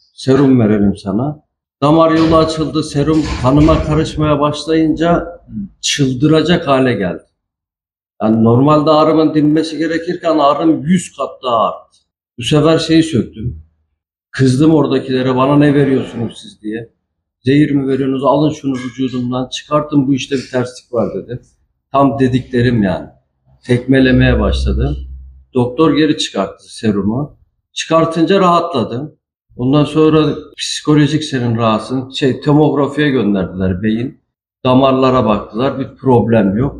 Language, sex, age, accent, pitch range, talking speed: Turkish, male, 50-69, native, 105-150 Hz, 115 wpm